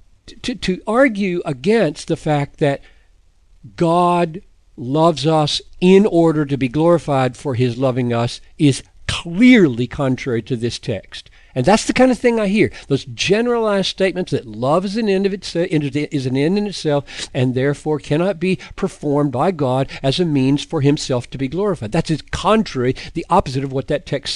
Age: 50-69